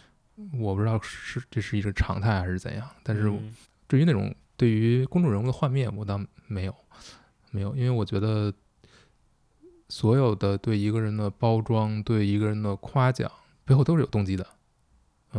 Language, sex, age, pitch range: Chinese, male, 20-39, 100-125 Hz